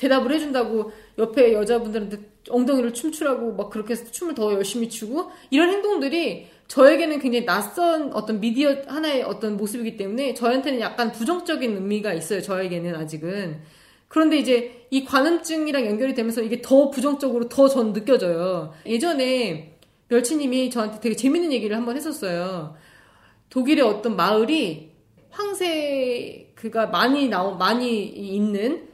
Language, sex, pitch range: Korean, female, 220-320 Hz